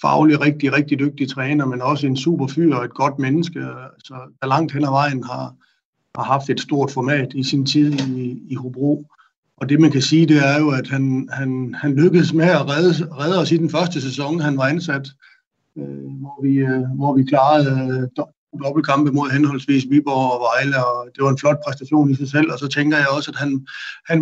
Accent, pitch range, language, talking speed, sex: native, 135-155 Hz, Danish, 220 wpm, male